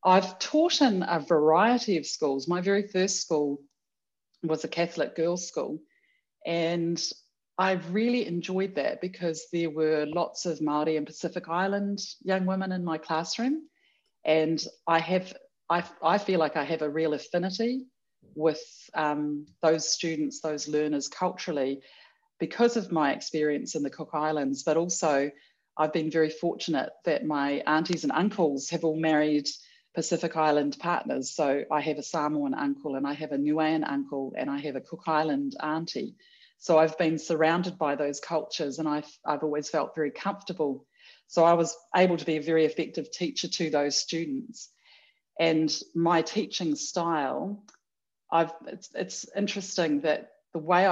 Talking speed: 160 wpm